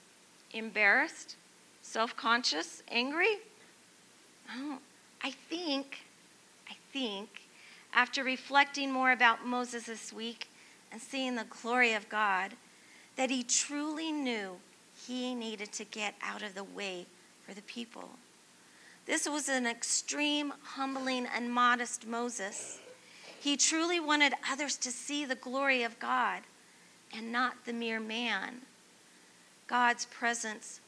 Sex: female